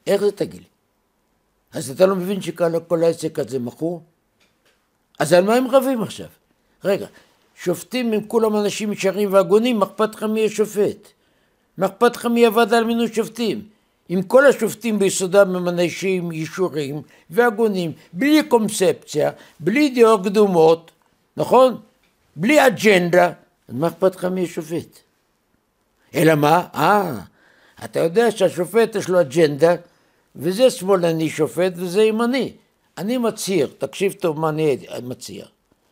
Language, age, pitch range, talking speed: Hebrew, 60-79, 170-215 Hz, 130 wpm